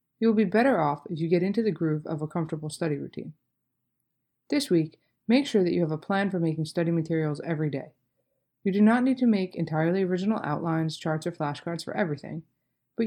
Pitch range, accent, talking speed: 160-205 Hz, American, 210 wpm